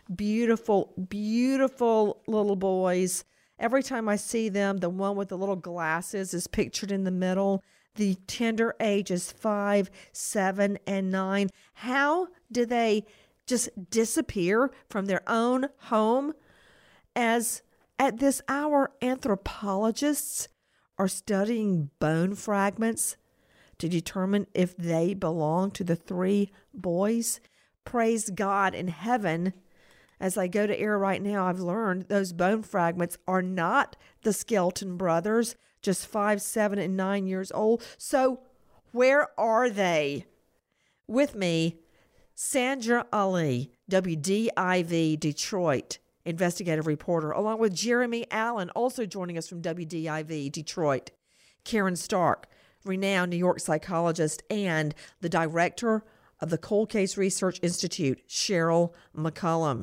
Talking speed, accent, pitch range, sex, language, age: 120 wpm, American, 175-225 Hz, female, English, 50-69